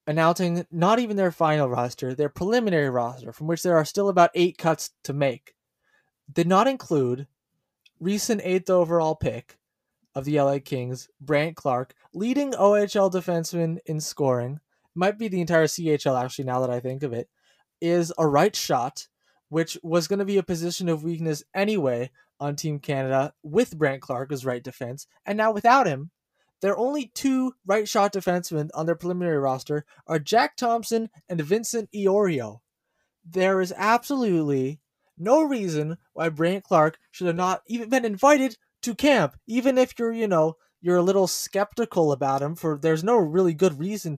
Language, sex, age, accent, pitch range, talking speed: English, male, 20-39, American, 145-195 Hz, 170 wpm